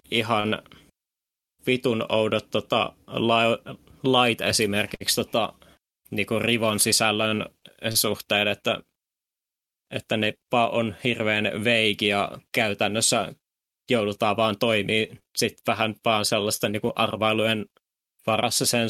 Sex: male